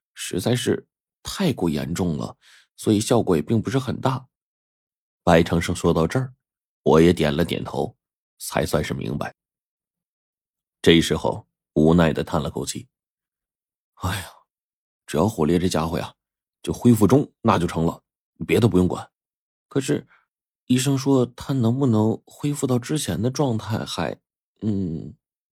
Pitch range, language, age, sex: 80-120 Hz, Chinese, 30-49, male